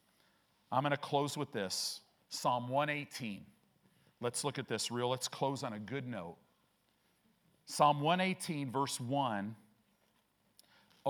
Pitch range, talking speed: 125-180 Hz, 125 wpm